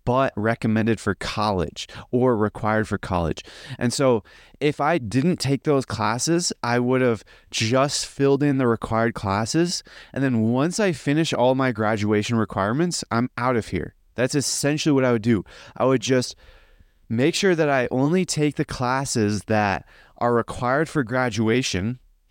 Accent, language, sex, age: American, English, male, 20-39